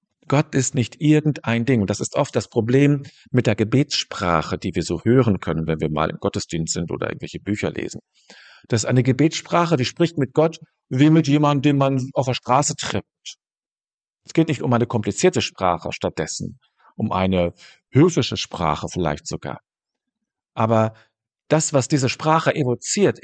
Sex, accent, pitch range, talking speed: male, German, 105-150 Hz, 170 wpm